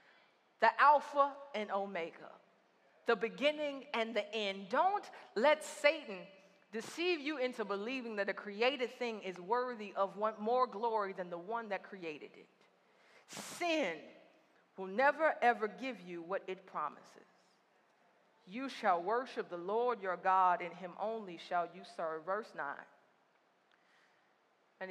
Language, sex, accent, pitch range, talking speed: English, female, American, 190-260 Hz, 135 wpm